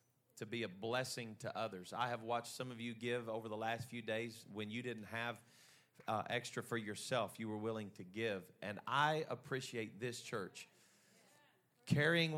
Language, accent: English, American